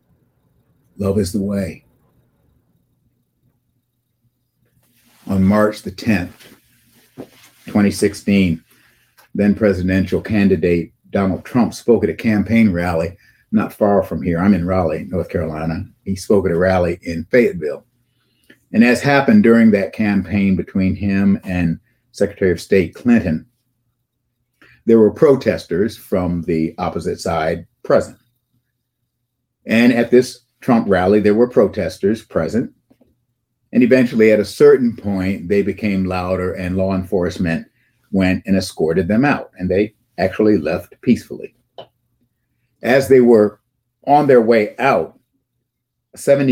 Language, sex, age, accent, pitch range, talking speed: English, male, 50-69, American, 95-120 Hz, 125 wpm